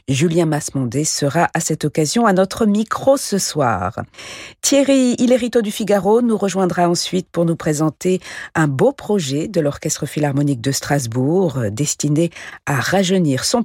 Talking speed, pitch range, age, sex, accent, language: 145 wpm, 150-215 Hz, 50-69, female, French, French